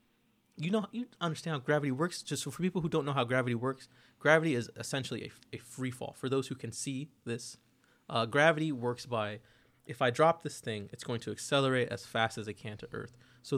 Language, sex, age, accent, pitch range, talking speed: English, male, 20-39, American, 115-150 Hz, 225 wpm